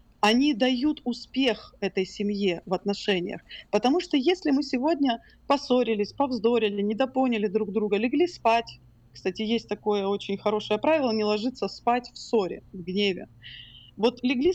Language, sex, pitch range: Russian, female, 210-280 Hz